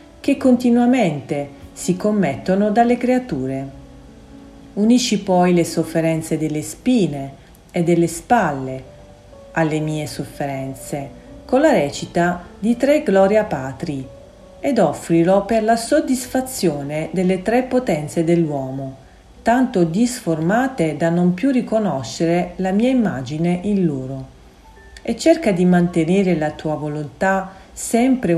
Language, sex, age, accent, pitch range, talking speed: Italian, female, 40-59, native, 150-230 Hz, 110 wpm